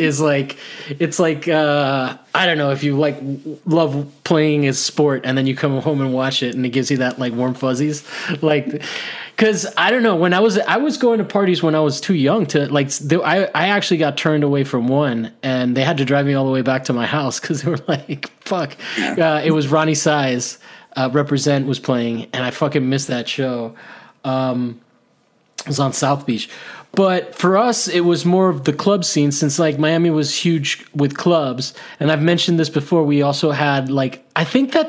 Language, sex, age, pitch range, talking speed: English, male, 20-39, 140-170 Hz, 220 wpm